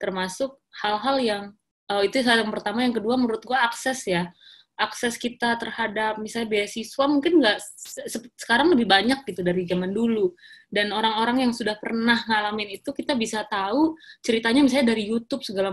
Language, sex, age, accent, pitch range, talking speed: Indonesian, female, 20-39, native, 195-260 Hz, 165 wpm